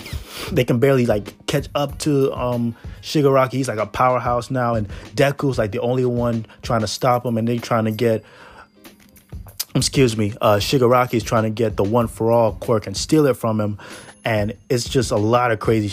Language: English